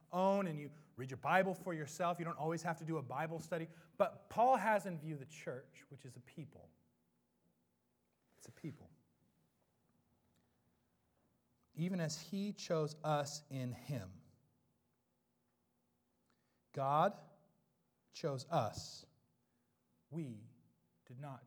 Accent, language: American, English